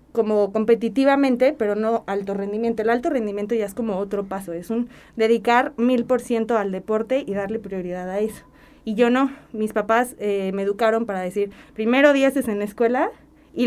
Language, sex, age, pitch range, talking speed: English, female, 20-39, 205-240 Hz, 185 wpm